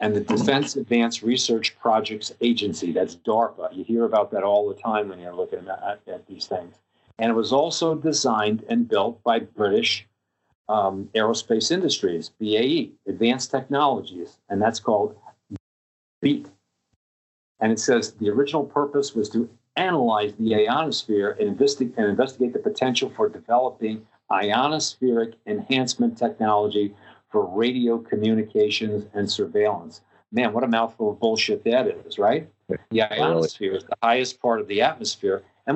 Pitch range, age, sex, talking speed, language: 105-135 Hz, 50-69, male, 145 wpm, English